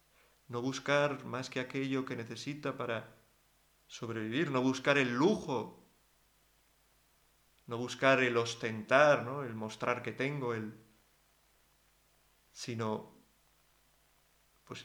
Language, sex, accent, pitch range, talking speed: Spanish, male, Spanish, 120-135 Hz, 100 wpm